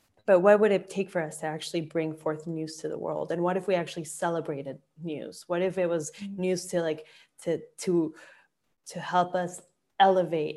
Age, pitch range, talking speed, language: 20-39, 155-185 Hz, 200 wpm, English